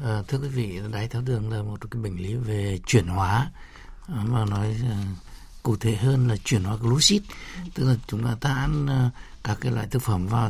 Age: 60-79